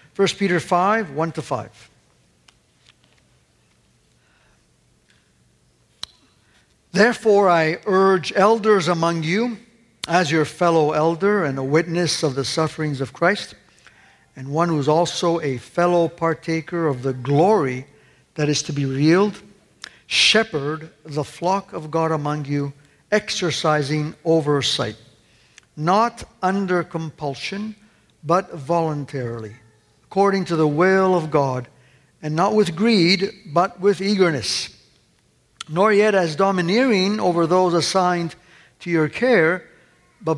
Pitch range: 150-190 Hz